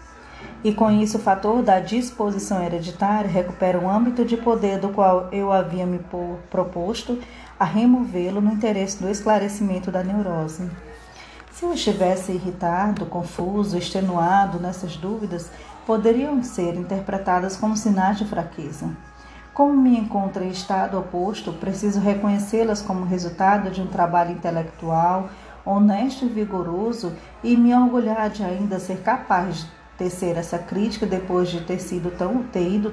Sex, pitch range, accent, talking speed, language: female, 180-215 Hz, Brazilian, 140 wpm, Portuguese